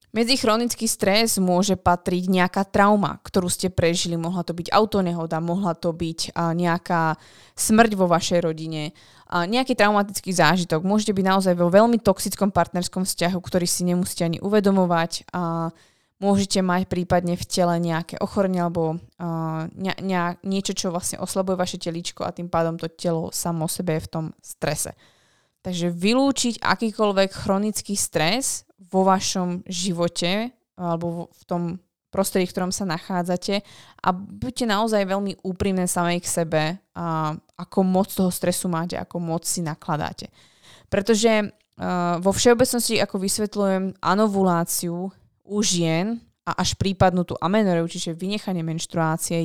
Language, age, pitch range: Slovak, 20-39, 170-200 Hz